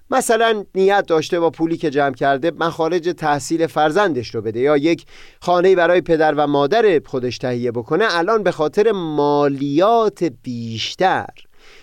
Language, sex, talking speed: Persian, male, 145 wpm